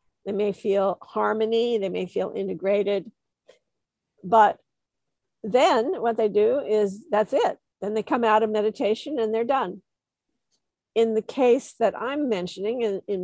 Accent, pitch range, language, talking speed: American, 190-225 Hz, English, 150 wpm